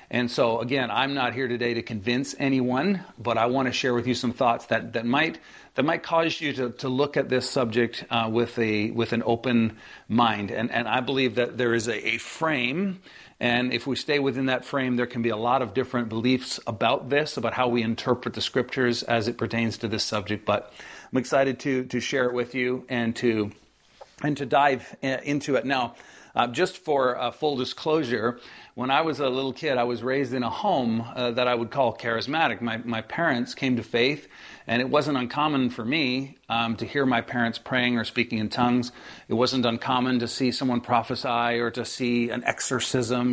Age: 50-69